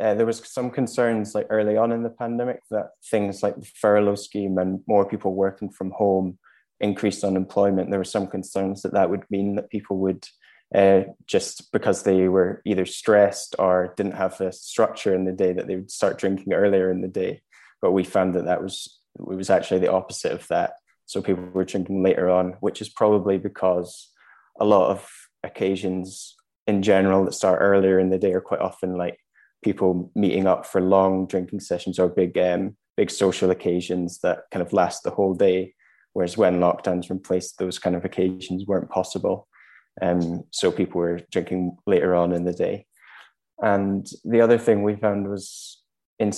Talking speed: 195 wpm